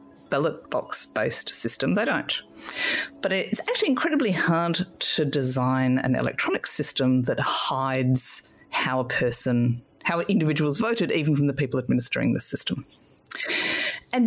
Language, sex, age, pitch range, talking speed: English, female, 40-59, 130-200 Hz, 130 wpm